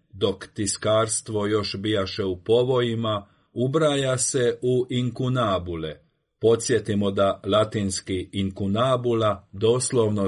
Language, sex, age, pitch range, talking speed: Croatian, male, 40-59, 100-120 Hz, 90 wpm